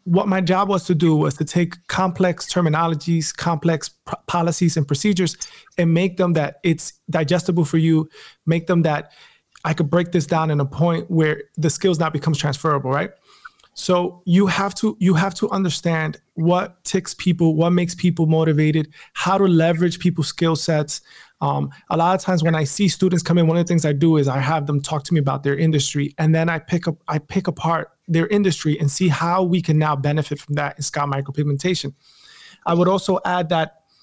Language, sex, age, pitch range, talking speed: English, male, 20-39, 150-180 Hz, 205 wpm